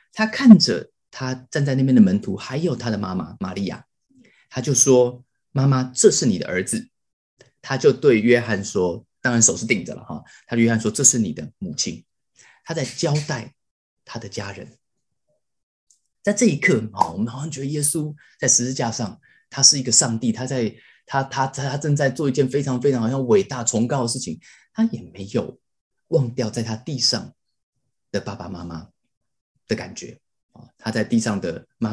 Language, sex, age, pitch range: Chinese, male, 20-39, 115-150 Hz